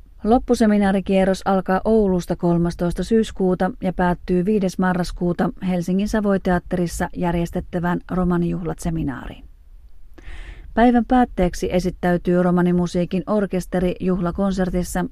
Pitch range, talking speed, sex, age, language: 180-200 Hz, 75 wpm, female, 30-49, Finnish